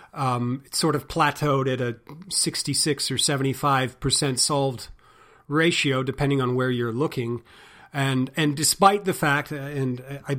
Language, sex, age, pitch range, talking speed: English, male, 40-59, 135-170 Hz, 145 wpm